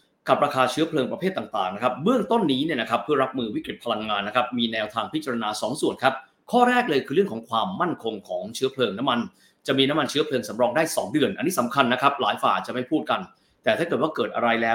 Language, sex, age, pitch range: Thai, male, 20-39, 120-170 Hz